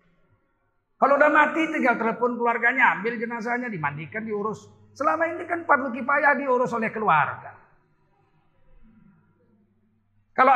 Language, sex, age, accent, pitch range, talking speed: Indonesian, male, 50-69, native, 215-285 Hz, 115 wpm